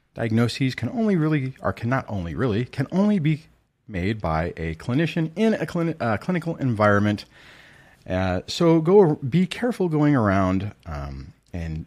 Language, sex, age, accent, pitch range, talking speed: English, male, 40-59, American, 95-150 Hz, 145 wpm